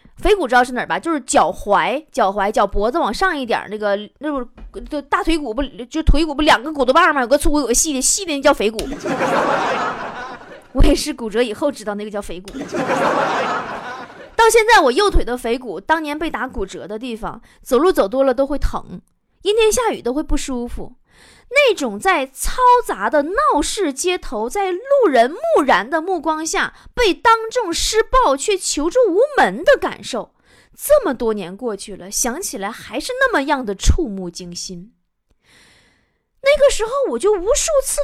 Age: 20-39